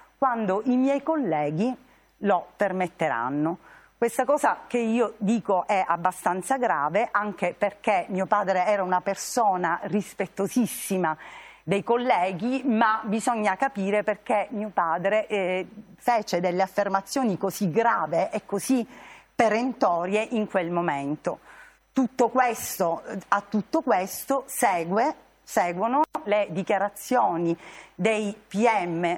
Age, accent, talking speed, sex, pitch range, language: 40-59, native, 110 wpm, female, 185-240 Hz, Italian